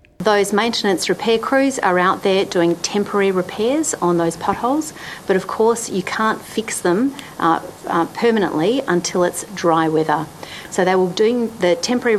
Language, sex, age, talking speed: Finnish, female, 50-69, 165 wpm